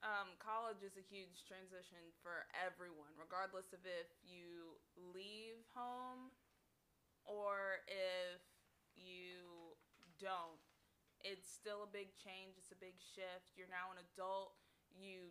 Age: 20-39